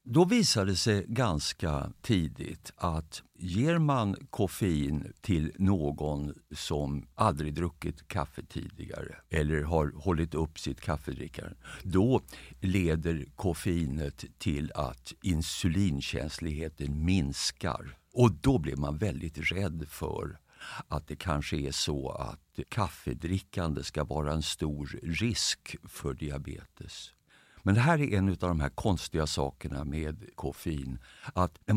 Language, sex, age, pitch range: Swedish, male, 50-69, 75-95 Hz